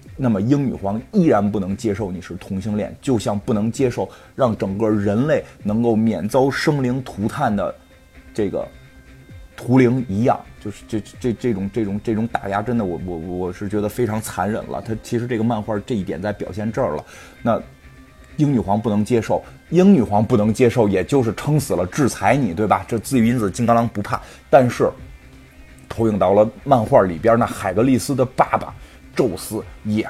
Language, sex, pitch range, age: Chinese, male, 100-130 Hz, 20-39